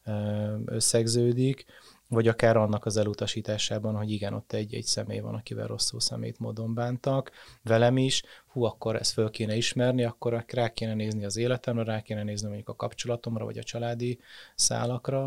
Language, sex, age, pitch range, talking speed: Hungarian, male, 30-49, 110-120 Hz, 160 wpm